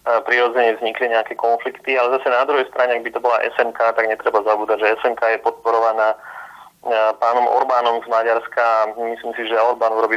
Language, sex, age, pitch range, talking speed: Slovak, male, 30-49, 115-120 Hz, 175 wpm